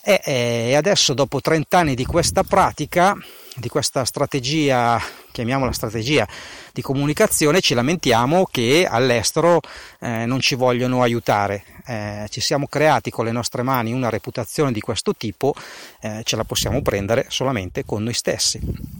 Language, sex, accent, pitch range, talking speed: Italian, male, native, 115-155 Hz, 145 wpm